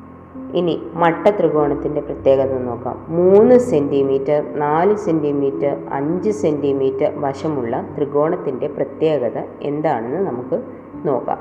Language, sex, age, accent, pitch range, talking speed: Malayalam, female, 20-39, native, 130-165 Hz, 90 wpm